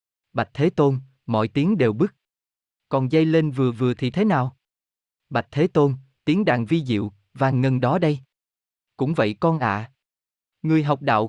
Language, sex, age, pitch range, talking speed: Vietnamese, male, 20-39, 110-155 Hz, 175 wpm